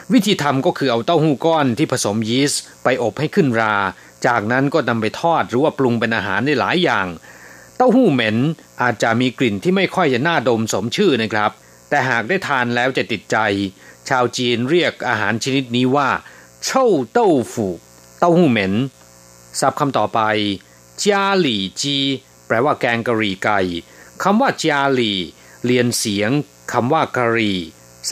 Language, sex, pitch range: Thai, male, 100-135 Hz